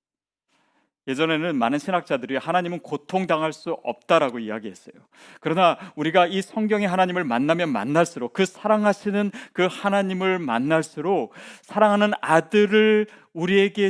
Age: 40-59